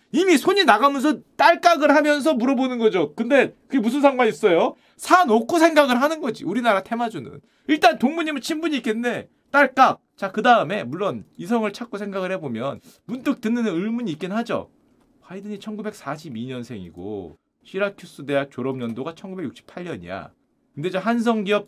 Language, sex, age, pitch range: Korean, male, 40-59, 180-265 Hz